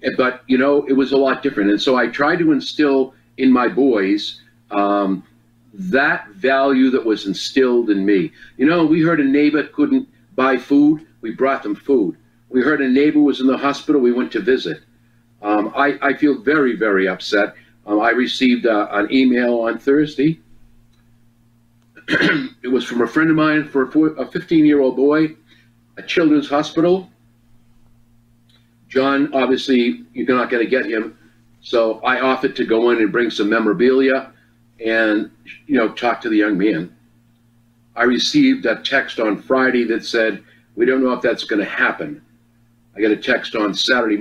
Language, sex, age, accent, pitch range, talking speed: English, male, 50-69, American, 115-140 Hz, 170 wpm